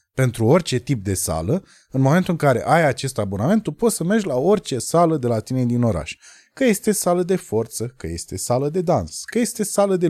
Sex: male